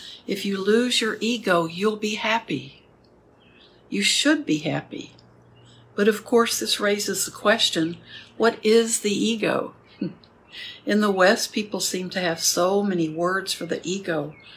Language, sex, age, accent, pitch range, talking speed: English, female, 60-79, American, 170-215 Hz, 150 wpm